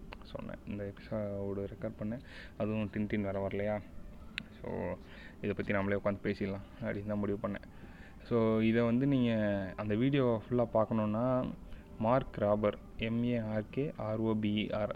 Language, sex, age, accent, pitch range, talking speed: Tamil, male, 20-39, native, 100-110 Hz, 130 wpm